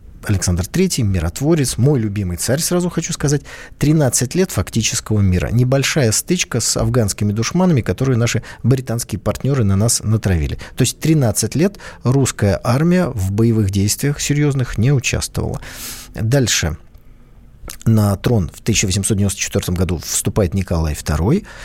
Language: Russian